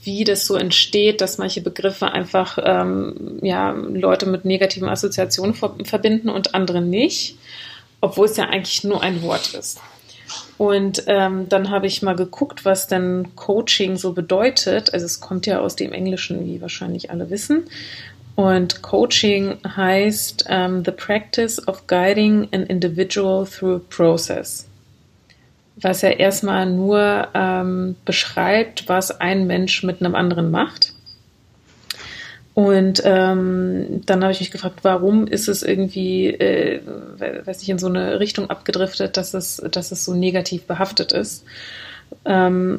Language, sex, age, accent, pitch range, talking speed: German, female, 30-49, German, 185-195 Hz, 140 wpm